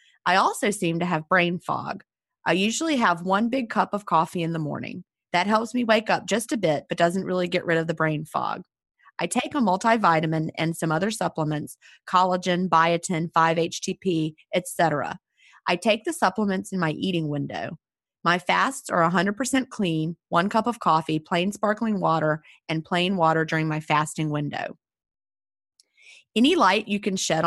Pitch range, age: 165-210 Hz, 30-49